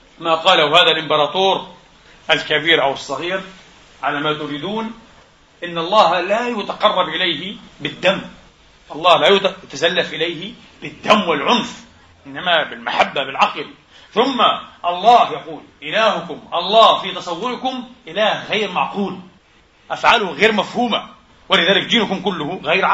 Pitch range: 160-210 Hz